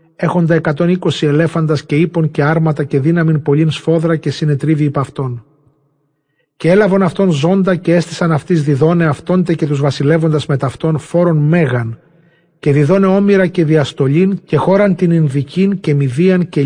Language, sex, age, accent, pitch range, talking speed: Greek, male, 40-59, native, 145-170 Hz, 160 wpm